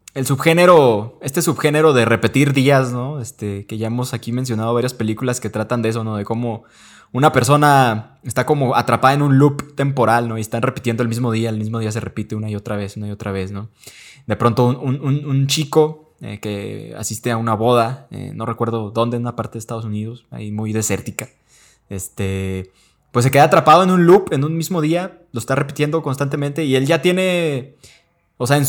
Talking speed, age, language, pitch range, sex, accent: 210 wpm, 20-39, Spanish, 115-145 Hz, male, Mexican